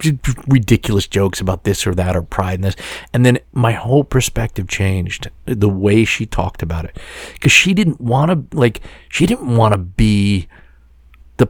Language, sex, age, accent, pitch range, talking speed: English, male, 40-59, American, 95-130 Hz, 175 wpm